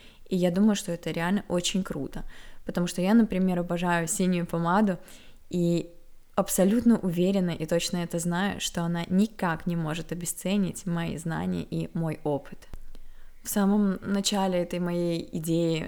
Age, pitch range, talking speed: 20-39, 170-195 Hz, 145 wpm